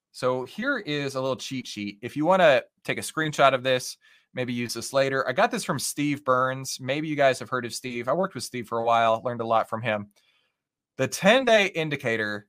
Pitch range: 120-155 Hz